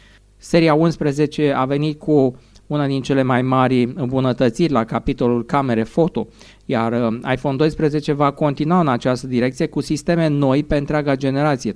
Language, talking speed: Romanian, 150 wpm